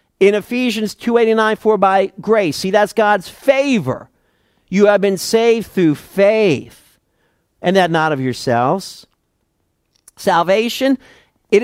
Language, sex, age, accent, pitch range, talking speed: English, male, 50-69, American, 130-205 Hz, 120 wpm